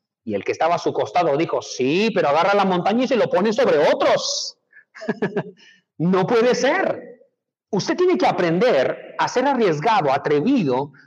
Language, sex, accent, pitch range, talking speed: Spanish, male, Mexican, 205-325 Hz, 165 wpm